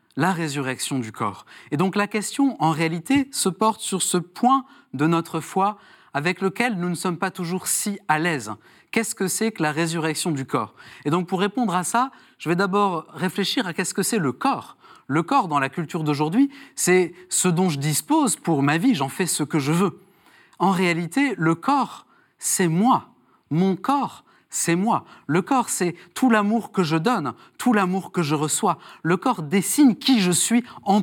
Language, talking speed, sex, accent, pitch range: French, 195 wpm, male, French, 155-210 Hz